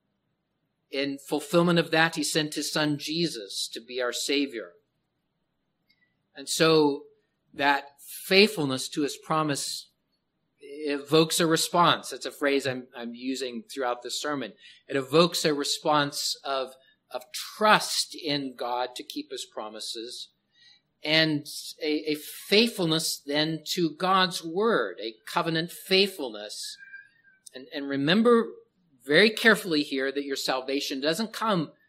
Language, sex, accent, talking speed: English, male, American, 125 wpm